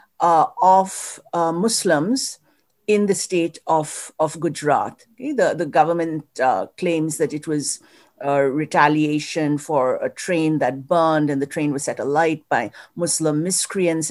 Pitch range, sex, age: 155-195 Hz, female, 50-69